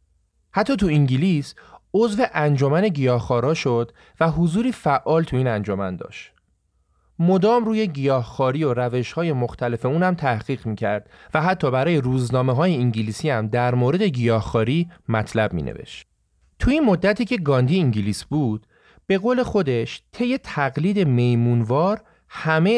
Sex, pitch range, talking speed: male, 115-170 Hz, 125 wpm